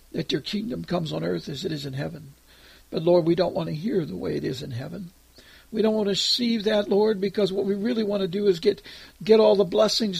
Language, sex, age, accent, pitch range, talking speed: English, male, 60-79, American, 175-210 Hz, 260 wpm